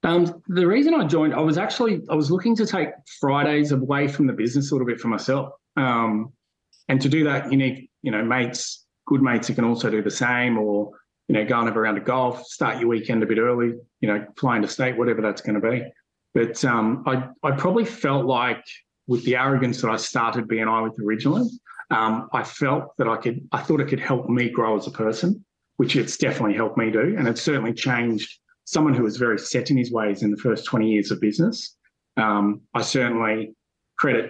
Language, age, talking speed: English, 30-49, 220 wpm